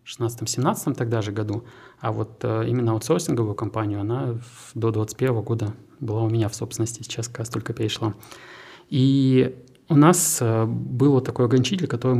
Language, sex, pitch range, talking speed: Russian, male, 110-130 Hz, 150 wpm